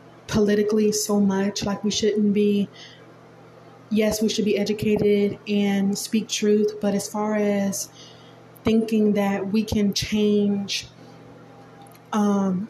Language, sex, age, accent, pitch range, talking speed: English, female, 20-39, American, 195-210 Hz, 120 wpm